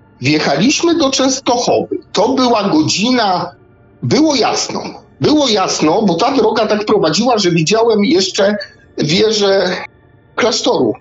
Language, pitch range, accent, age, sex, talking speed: Polish, 195-290 Hz, native, 50-69, male, 110 wpm